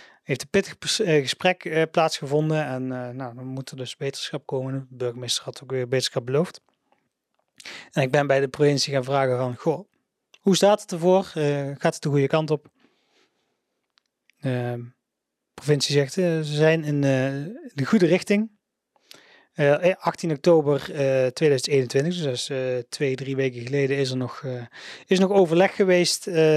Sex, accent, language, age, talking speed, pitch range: male, Dutch, Dutch, 30-49, 165 wpm, 130-160 Hz